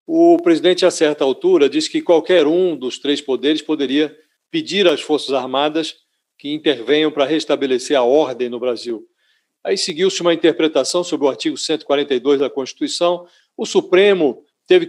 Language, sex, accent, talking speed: Portuguese, male, Brazilian, 155 wpm